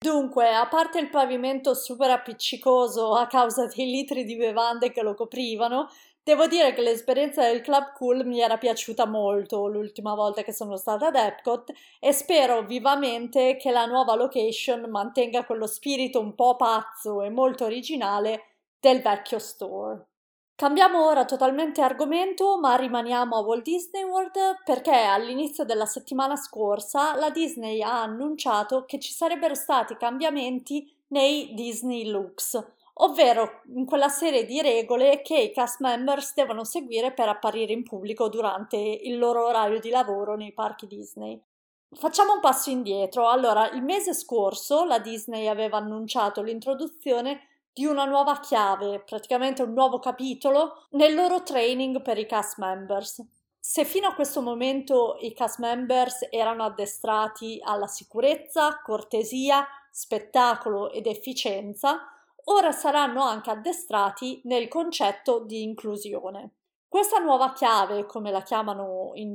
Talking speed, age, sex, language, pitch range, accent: 140 wpm, 30-49, female, Italian, 220-280 Hz, native